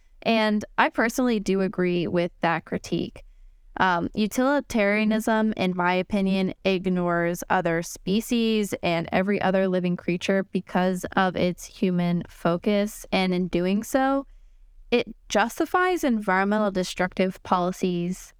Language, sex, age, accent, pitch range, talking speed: English, female, 20-39, American, 185-225 Hz, 115 wpm